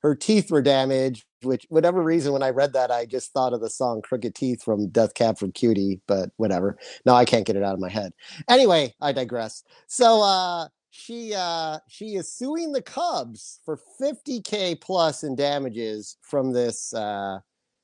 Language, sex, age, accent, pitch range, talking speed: English, male, 30-49, American, 115-160 Hz, 185 wpm